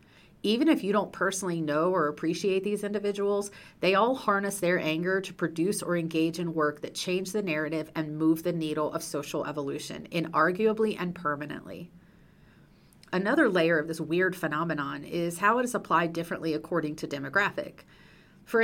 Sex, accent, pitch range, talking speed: female, American, 165-220 Hz, 165 wpm